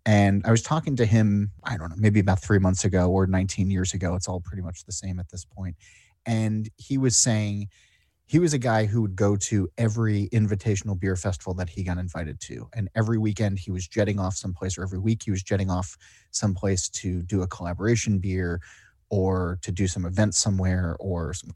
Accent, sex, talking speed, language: American, male, 215 wpm, English